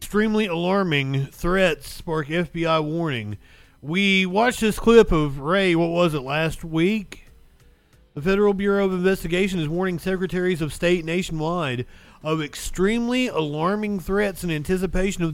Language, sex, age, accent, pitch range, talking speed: English, male, 40-59, American, 150-190 Hz, 135 wpm